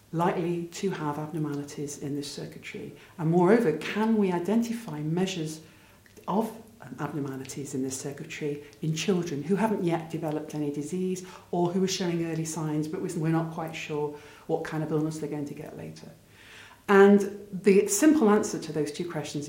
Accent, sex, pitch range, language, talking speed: British, female, 150-180 Hz, English, 165 wpm